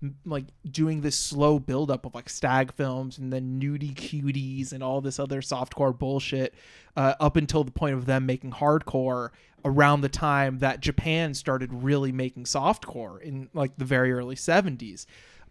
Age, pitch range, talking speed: 20-39, 135-160 Hz, 170 wpm